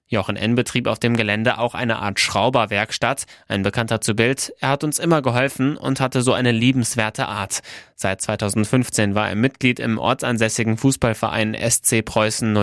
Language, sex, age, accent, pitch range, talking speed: German, male, 20-39, German, 105-125 Hz, 165 wpm